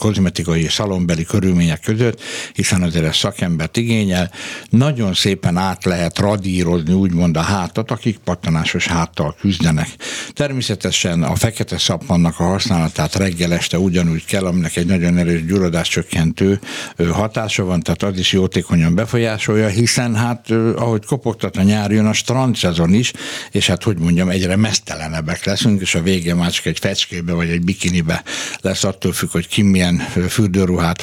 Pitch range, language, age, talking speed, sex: 85-110 Hz, Hungarian, 60-79, 145 wpm, male